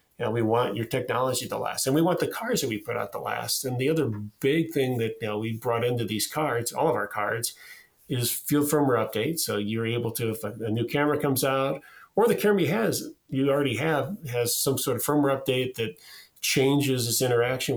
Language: English